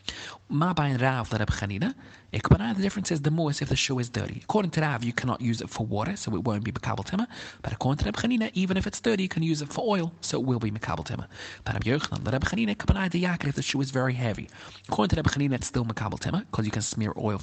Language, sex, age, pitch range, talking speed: English, male, 30-49, 115-165 Hz, 240 wpm